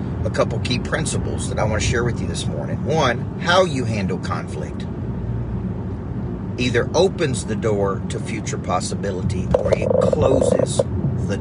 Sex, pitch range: male, 95-140 Hz